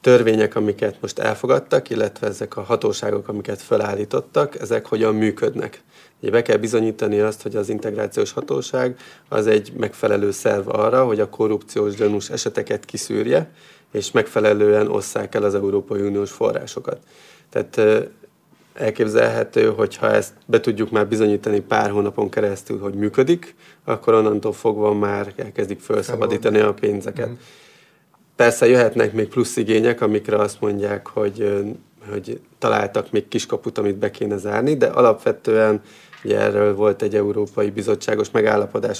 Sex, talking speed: male, 135 wpm